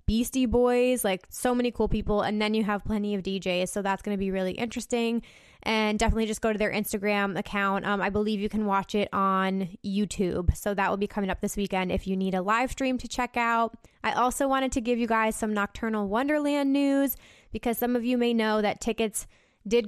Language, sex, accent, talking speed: English, female, American, 225 wpm